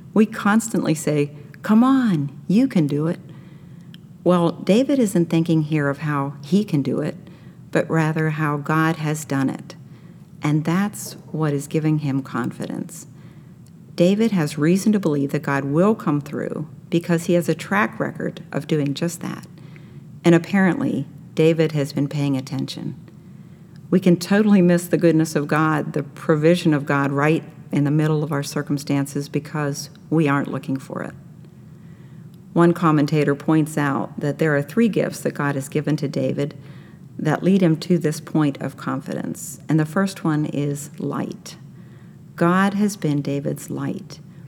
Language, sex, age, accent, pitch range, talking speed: English, female, 50-69, American, 145-175 Hz, 160 wpm